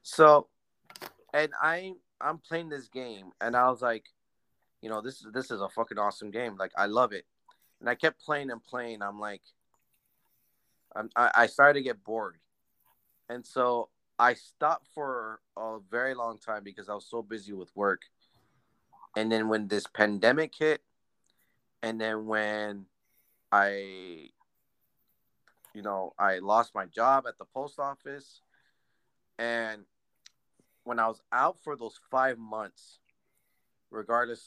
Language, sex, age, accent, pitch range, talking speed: English, male, 30-49, American, 105-125 Hz, 150 wpm